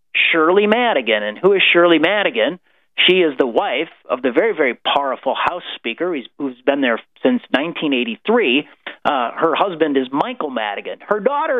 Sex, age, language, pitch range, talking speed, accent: male, 40-59, English, 150-245 Hz, 160 wpm, American